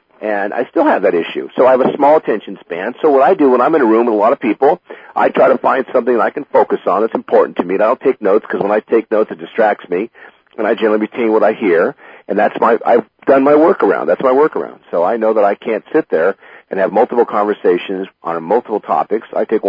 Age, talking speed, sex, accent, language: 40-59, 270 wpm, male, American, English